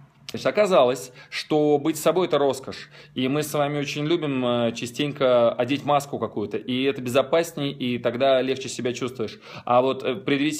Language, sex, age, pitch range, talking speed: Russian, male, 20-39, 120-145 Hz, 155 wpm